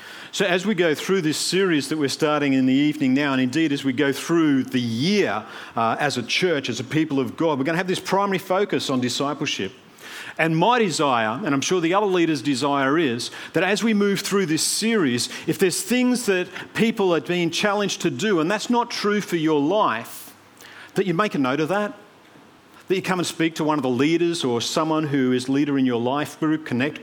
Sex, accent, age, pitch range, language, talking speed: male, Australian, 50-69, 145-185 Hz, English, 225 wpm